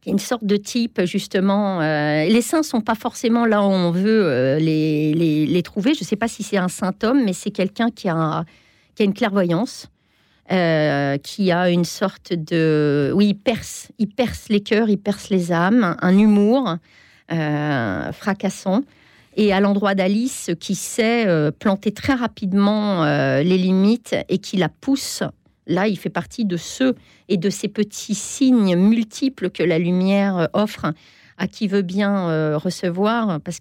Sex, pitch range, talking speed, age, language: female, 175-220 Hz, 175 wpm, 40-59, French